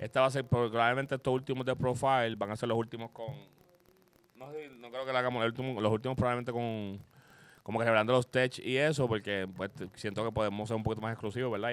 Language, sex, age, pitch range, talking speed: Spanish, male, 30-49, 100-120 Hz, 225 wpm